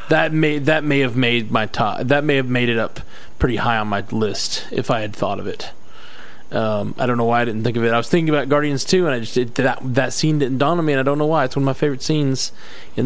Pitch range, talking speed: 120-150 Hz, 295 wpm